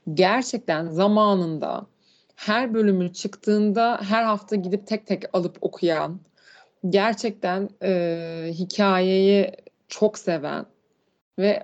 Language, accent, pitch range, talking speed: Turkish, native, 185-235 Hz, 95 wpm